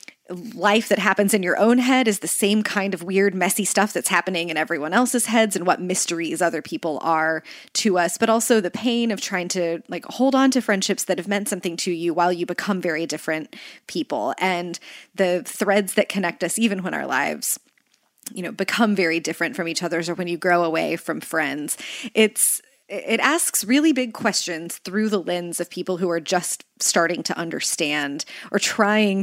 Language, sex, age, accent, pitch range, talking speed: English, female, 20-39, American, 175-230 Hz, 200 wpm